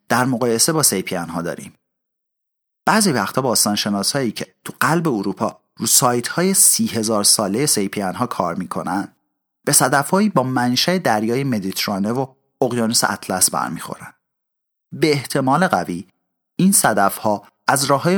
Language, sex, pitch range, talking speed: Persian, male, 100-150 Hz, 140 wpm